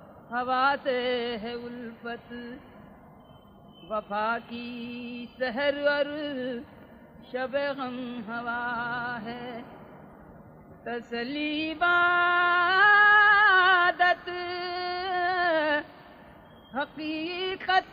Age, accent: 40-59, native